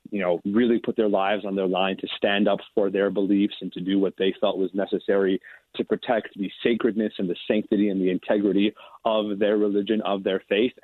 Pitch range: 100-120 Hz